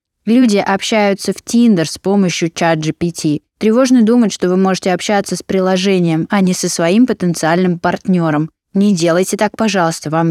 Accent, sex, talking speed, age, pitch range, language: native, female, 155 wpm, 20-39, 170-205 Hz, Russian